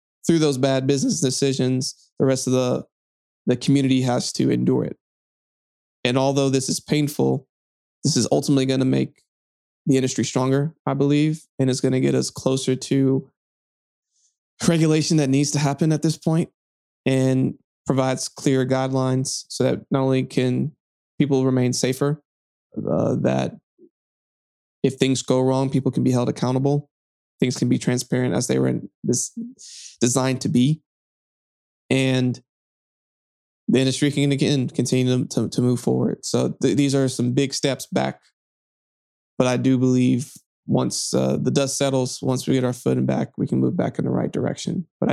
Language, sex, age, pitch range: English, male, 20-39, 120-140 Hz